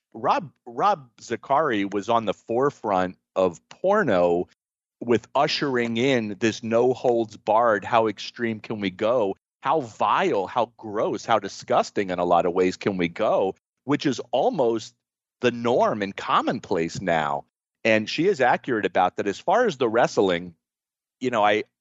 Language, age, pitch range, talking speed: English, 40-59, 95-130 Hz, 155 wpm